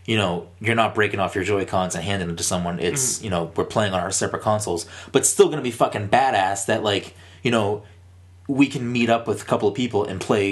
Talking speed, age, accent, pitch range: 250 wpm, 20-39, American, 90-115 Hz